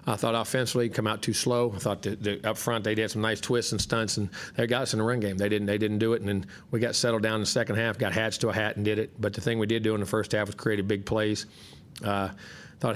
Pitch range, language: 105-115 Hz, English